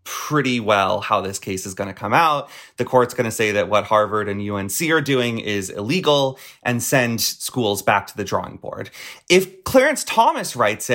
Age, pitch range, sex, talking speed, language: 30-49, 110-170 Hz, male, 195 wpm, English